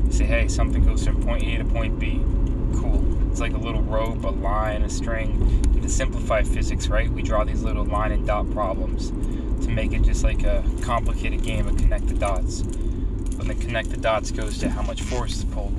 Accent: American